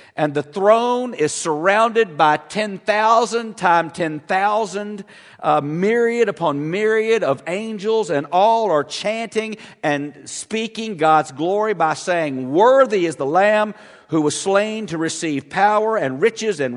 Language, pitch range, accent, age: English, 145-210 Hz, American, 50-69